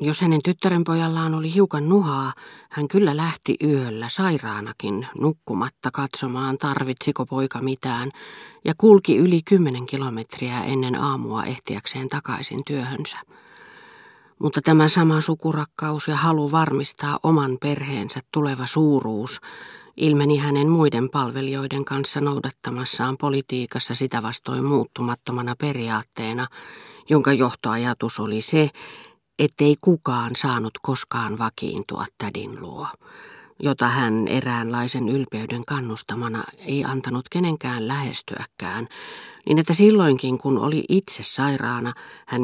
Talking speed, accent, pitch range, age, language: 105 wpm, native, 125-155 Hz, 40-59, Finnish